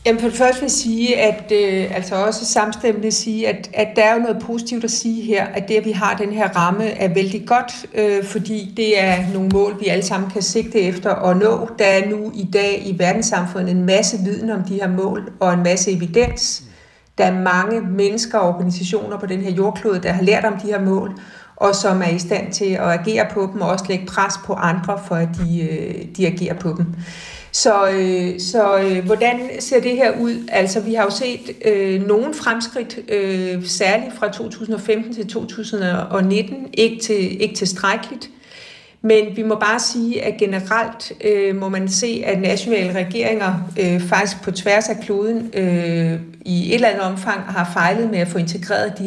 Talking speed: 200 wpm